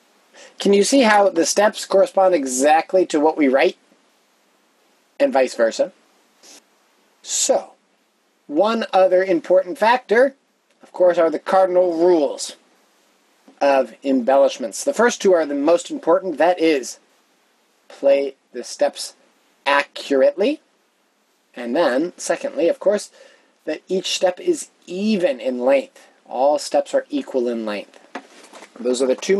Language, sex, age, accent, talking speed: English, male, 30-49, American, 130 wpm